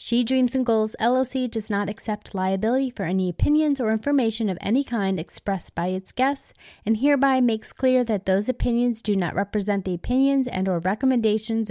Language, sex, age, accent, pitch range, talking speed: English, female, 20-39, American, 195-250 Hz, 185 wpm